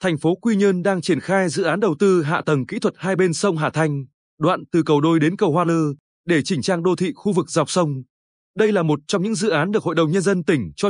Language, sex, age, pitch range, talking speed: Vietnamese, male, 20-39, 150-195 Hz, 280 wpm